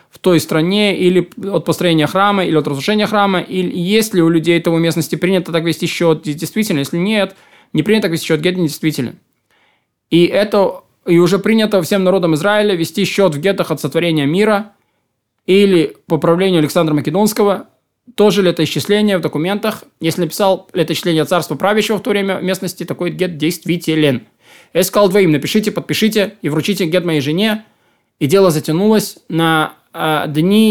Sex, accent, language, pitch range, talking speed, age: male, native, Russian, 160-195 Hz, 165 wpm, 20-39